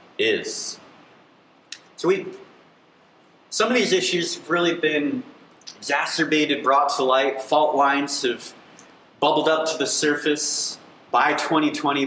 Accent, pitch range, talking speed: American, 135-160 Hz, 120 wpm